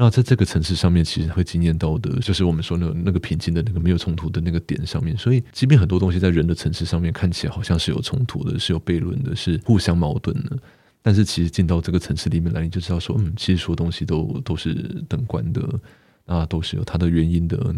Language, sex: Chinese, male